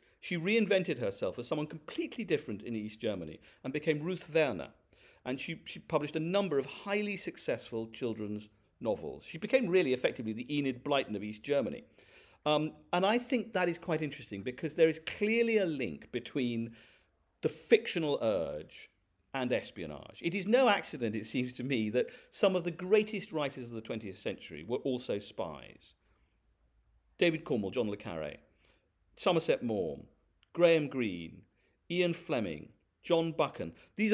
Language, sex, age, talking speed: English, male, 50-69, 160 wpm